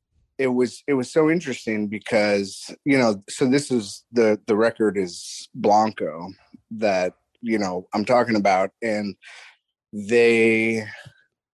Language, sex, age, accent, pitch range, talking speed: English, male, 30-49, American, 100-120 Hz, 130 wpm